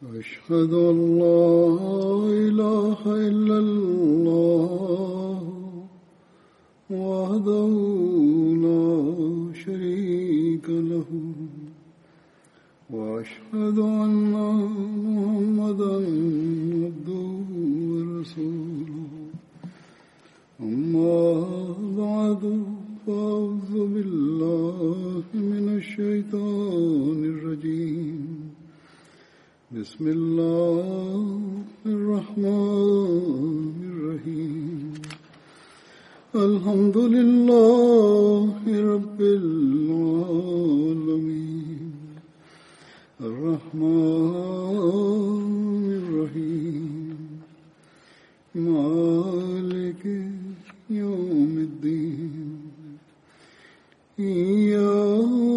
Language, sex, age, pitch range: Tamil, male, 60-79, 160-205 Hz